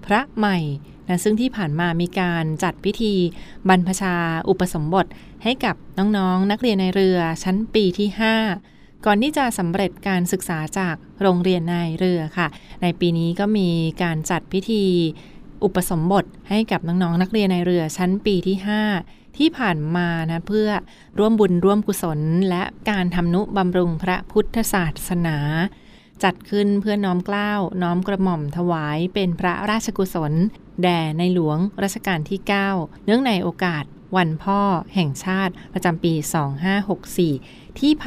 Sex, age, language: female, 20-39, Thai